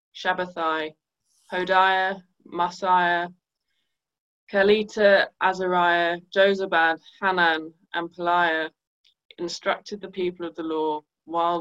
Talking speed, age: 85 wpm, 20-39